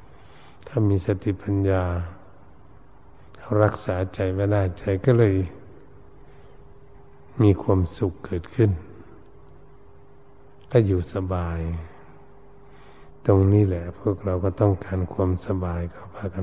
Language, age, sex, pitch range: Thai, 60-79, male, 90-105 Hz